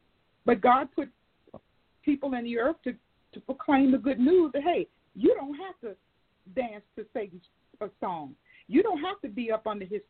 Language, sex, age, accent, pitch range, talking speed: English, female, 50-69, American, 225-315 Hz, 185 wpm